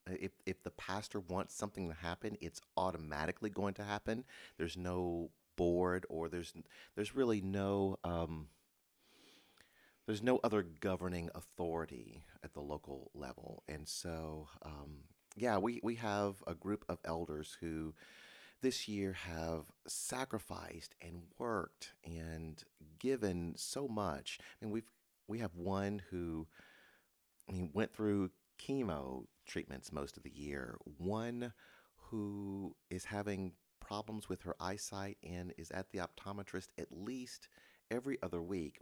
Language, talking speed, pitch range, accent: English, 140 wpm, 80-105 Hz, American